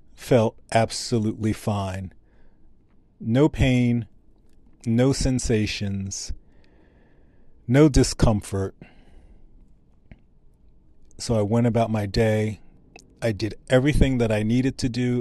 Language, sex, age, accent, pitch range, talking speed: English, male, 40-59, American, 105-130 Hz, 90 wpm